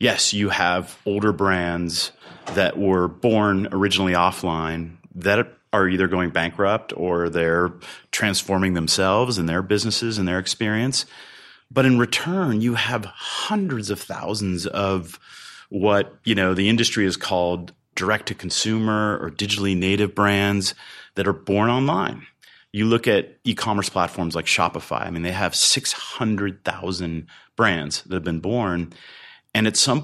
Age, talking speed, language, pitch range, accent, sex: 30-49, 135 wpm, English, 90-105 Hz, American, male